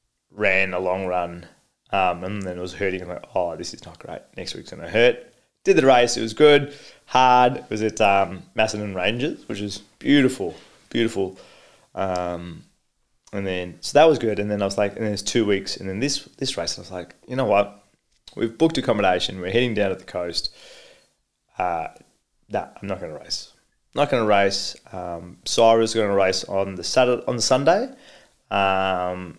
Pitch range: 90-110 Hz